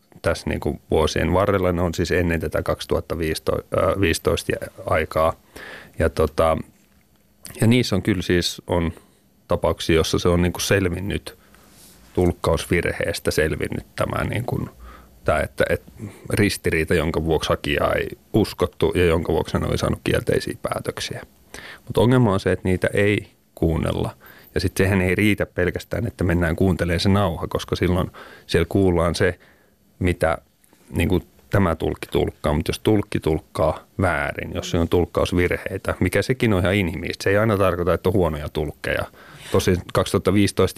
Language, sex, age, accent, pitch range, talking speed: Finnish, male, 30-49, native, 85-100 Hz, 135 wpm